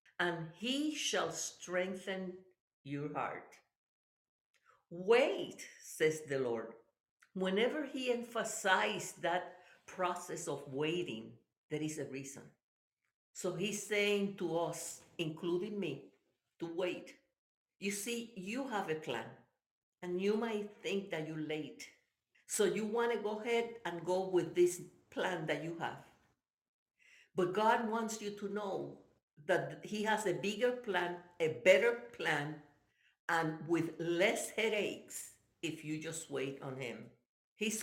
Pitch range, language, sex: 170-220 Hz, English, female